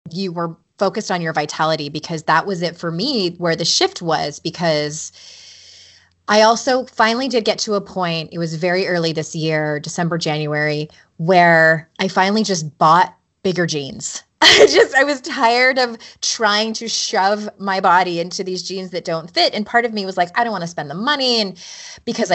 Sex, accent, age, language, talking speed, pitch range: female, American, 20-39, English, 195 wpm, 175-245 Hz